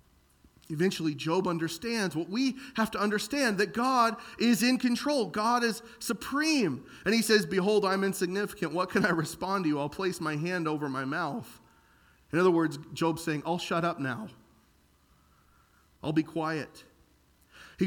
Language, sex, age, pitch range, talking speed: English, male, 30-49, 120-180 Hz, 160 wpm